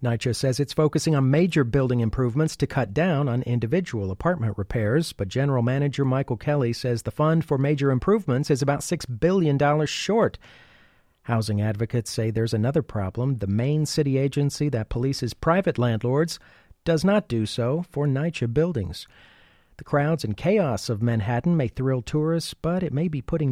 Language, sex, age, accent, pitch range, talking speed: English, male, 40-59, American, 120-155 Hz, 170 wpm